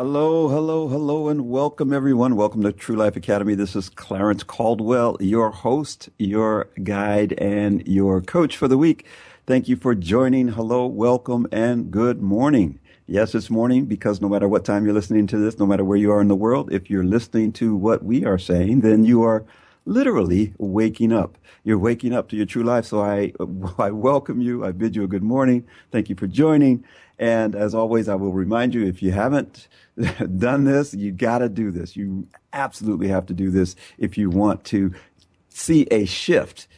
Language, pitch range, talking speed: English, 95-120 Hz, 195 wpm